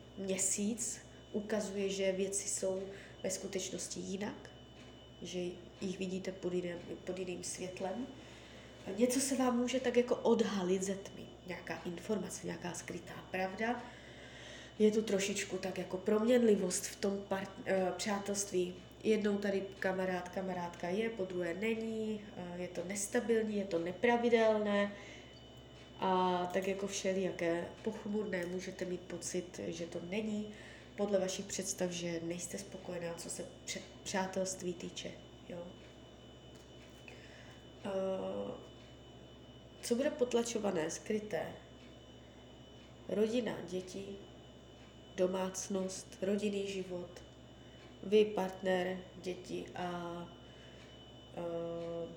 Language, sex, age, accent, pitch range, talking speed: Czech, female, 20-39, native, 180-210 Hz, 100 wpm